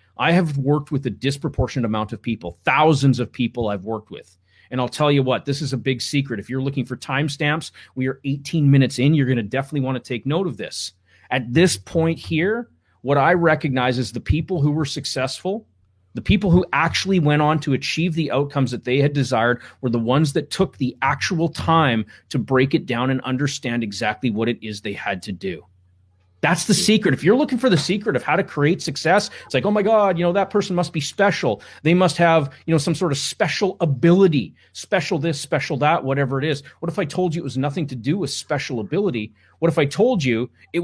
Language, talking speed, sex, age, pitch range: English, 230 wpm, male, 30-49, 125-165 Hz